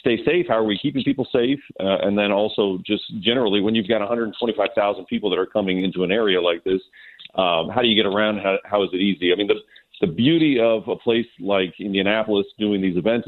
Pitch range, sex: 95-115 Hz, male